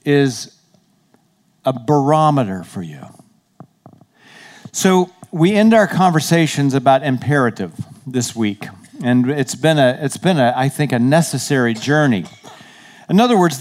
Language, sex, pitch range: English, male, 140-185 Hz